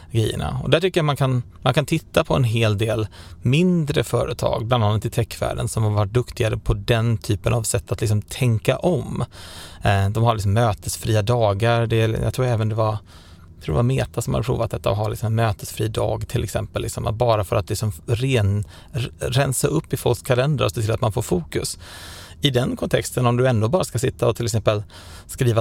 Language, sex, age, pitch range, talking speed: Swedish, male, 30-49, 105-125 Hz, 220 wpm